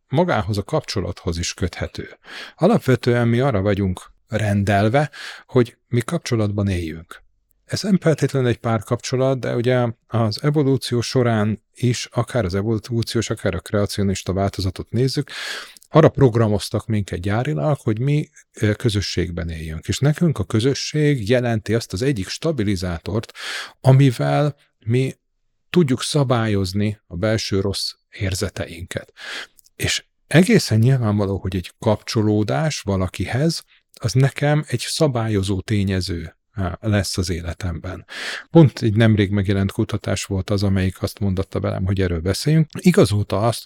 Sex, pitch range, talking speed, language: male, 100-130 Hz, 125 wpm, Hungarian